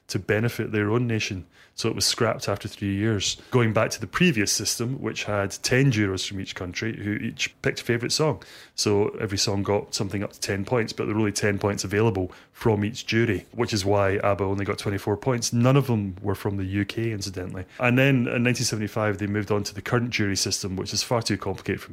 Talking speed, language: 230 wpm, English